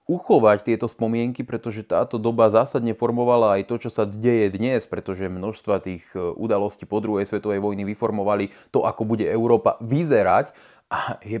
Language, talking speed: Slovak, 160 wpm